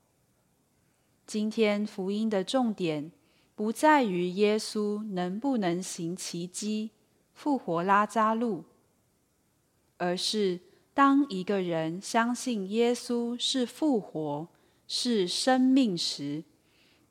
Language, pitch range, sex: Chinese, 175-235 Hz, female